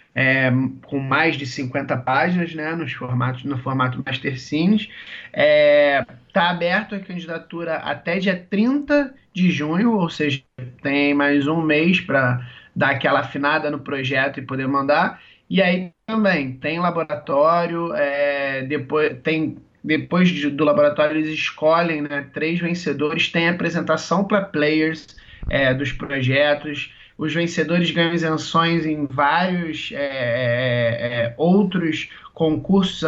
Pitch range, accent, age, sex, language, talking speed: 140-170 Hz, Brazilian, 20-39, male, Portuguese, 125 wpm